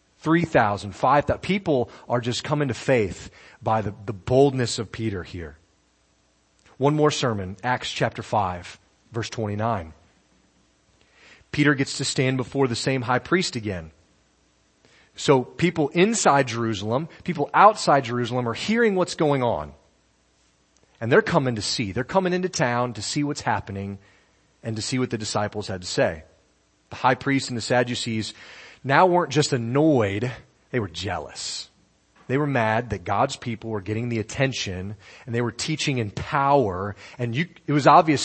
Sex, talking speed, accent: male, 160 wpm, American